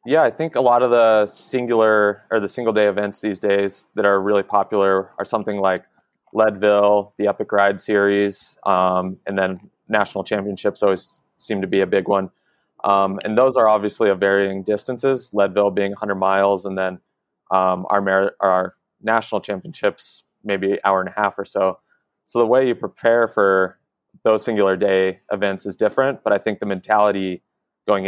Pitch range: 95-105 Hz